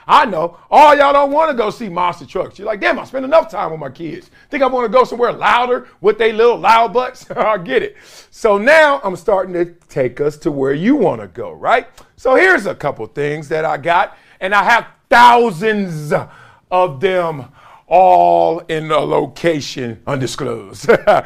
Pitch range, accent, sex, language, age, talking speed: 155-260 Hz, American, male, English, 40-59, 190 wpm